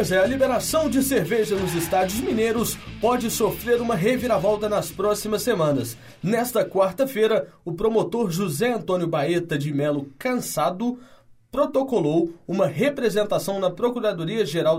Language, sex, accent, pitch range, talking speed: Portuguese, male, Brazilian, 165-220 Hz, 120 wpm